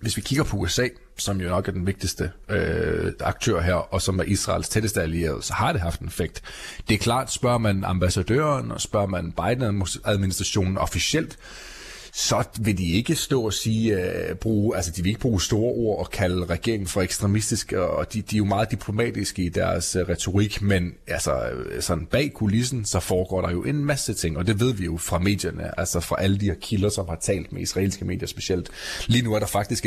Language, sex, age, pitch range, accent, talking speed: Danish, male, 30-49, 95-115 Hz, native, 215 wpm